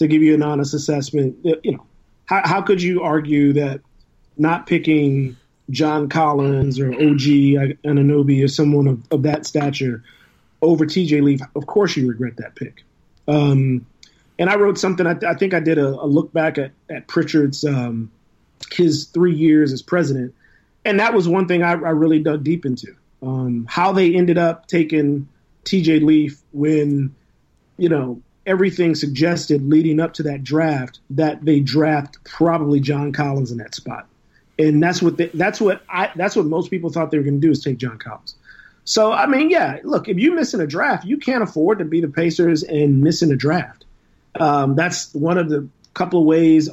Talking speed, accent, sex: 190 wpm, American, male